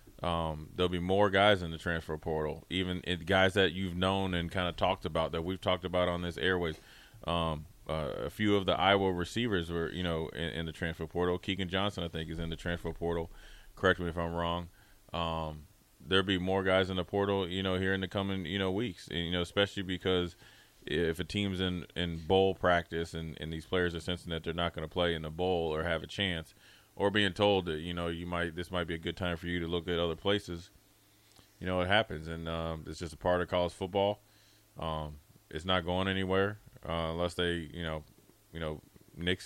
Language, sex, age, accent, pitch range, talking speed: English, male, 20-39, American, 85-95 Hz, 230 wpm